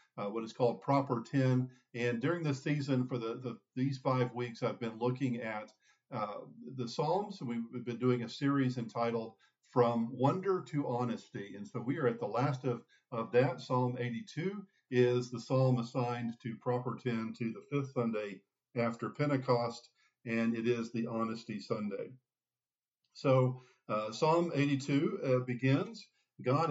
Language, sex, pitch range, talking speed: English, male, 115-140 Hz, 155 wpm